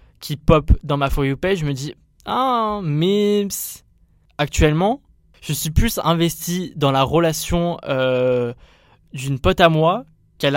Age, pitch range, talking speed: 20-39, 125-170 Hz, 150 wpm